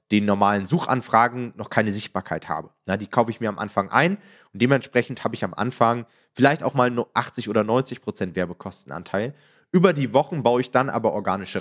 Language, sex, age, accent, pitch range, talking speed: German, male, 30-49, German, 105-140 Hz, 190 wpm